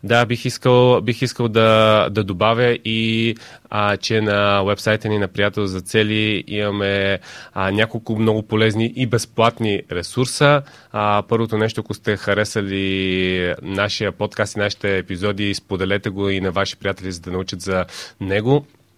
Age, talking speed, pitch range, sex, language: 20-39, 150 wpm, 95-115 Hz, male, Bulgarian